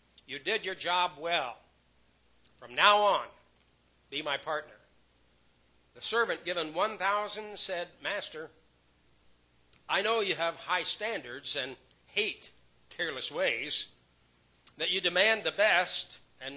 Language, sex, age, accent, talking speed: English, male, 60-79, American, 120 wpm